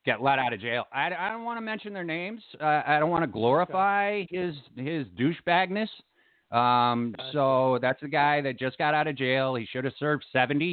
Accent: American